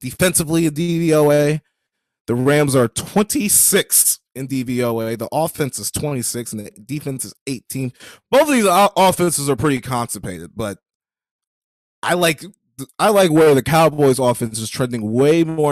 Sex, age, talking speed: male, 20-39, 145 wpm